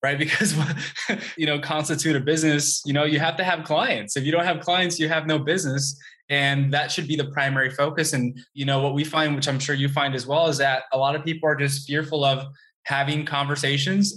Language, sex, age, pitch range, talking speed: English, male, 20-39, 135-155 Hz, 235 wpm